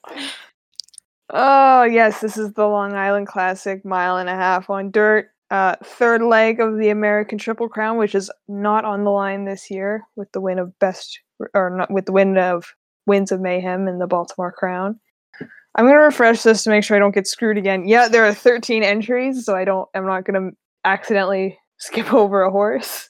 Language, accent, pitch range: English, American, 185-225 Hz